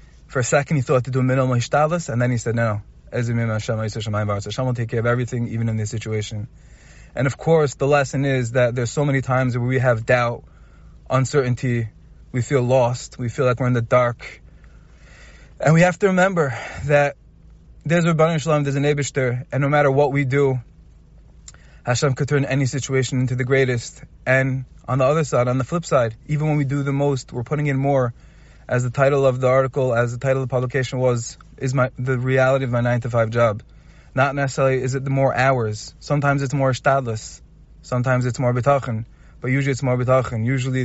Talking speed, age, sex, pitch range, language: 205 wpm, 20-39, male, 120-135 Hz, English